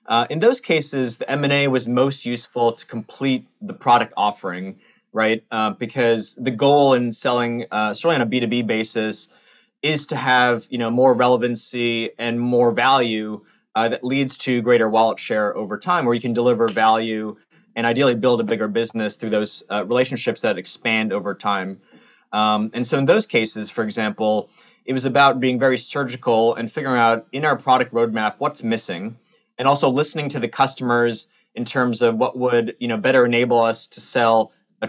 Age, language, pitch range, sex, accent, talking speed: 20-39, English, 110-125 Hz, male, American, 185 wpm